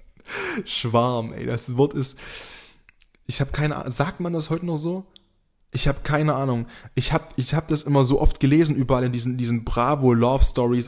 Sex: male